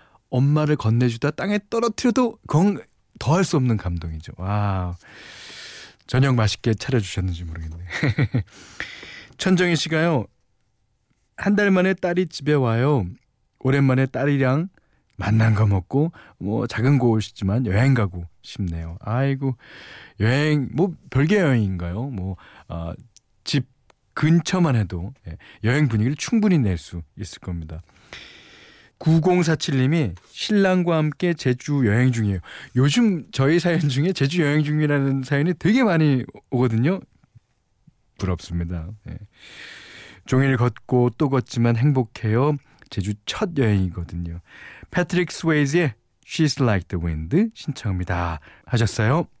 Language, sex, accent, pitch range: Korean, male, native, 100-150 Hz